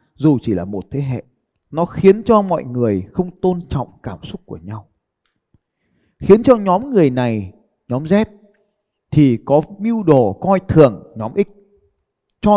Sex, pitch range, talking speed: male, 115-175 Hz, 160 wpm